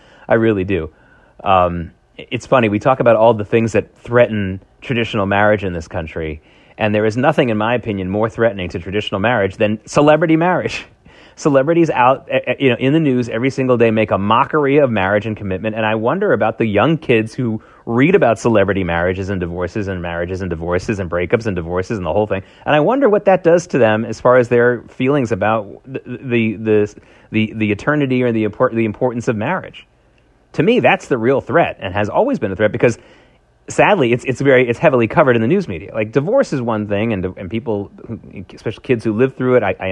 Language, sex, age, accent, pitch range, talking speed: English, male, 30-49, American, 100-130 Hz, 215 wpm